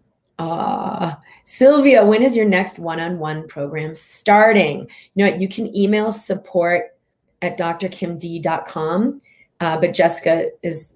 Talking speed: 120 wpm